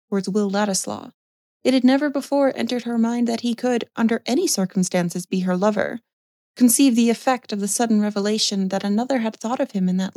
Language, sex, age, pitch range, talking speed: English, female, 30-49, 200-265 Hz, 200 wpm